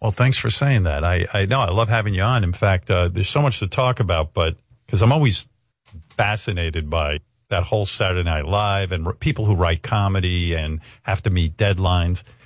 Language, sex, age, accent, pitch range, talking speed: Italian, male, 50-69, American, 95-130 Hz, 210 wpm